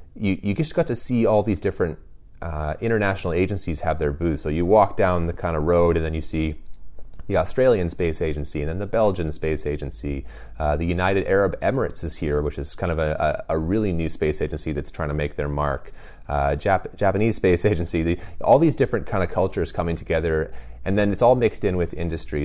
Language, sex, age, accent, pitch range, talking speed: English, male, 30-49, American, 75-95 Hz, 215 wpm